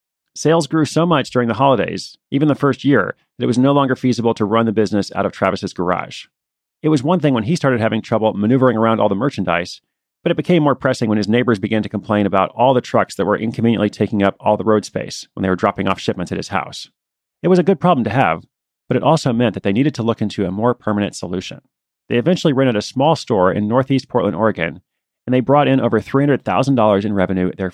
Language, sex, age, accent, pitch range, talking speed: English, male, 30-49, American, 105-135 Hz, 240 wpm